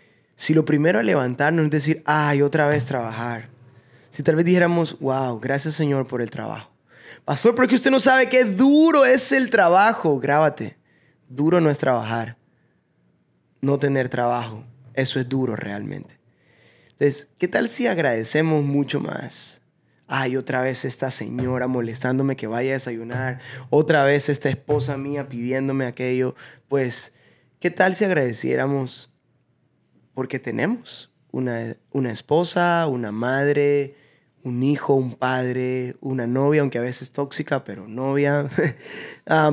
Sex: male